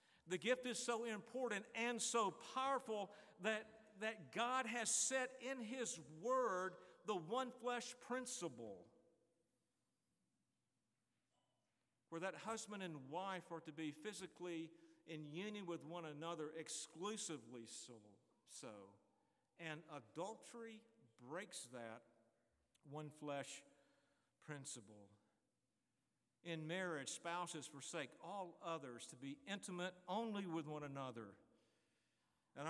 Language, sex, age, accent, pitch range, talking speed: English, male, 50-69, American, 135-190 Hz, 105 wpm